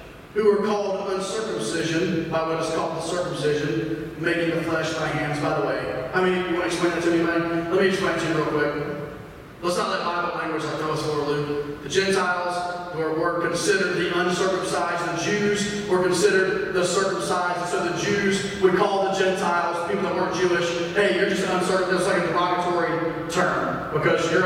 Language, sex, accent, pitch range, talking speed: English, male, American, 165-190 Hz, 180 wpm